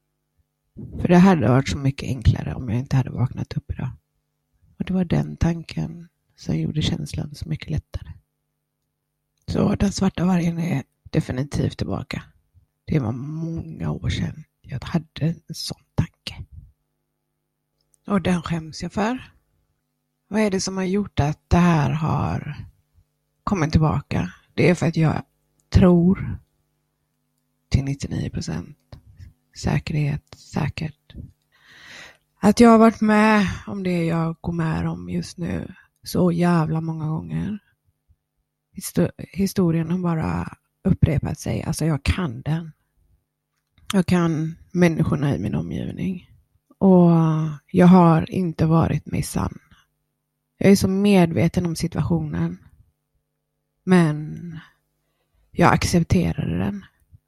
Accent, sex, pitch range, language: native, female, 135-180 Hz, Swedish